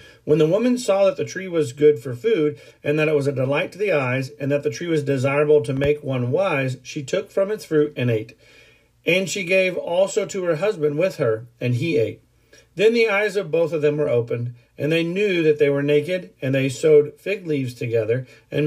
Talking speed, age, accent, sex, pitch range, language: 230 wpm, 40-59, American, male, 130-175 Hz, English